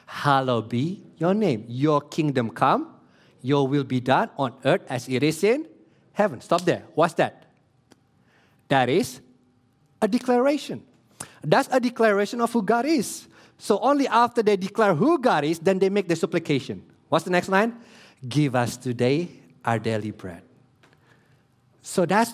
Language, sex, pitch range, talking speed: English, male, 125-185 Hz, 155 wpm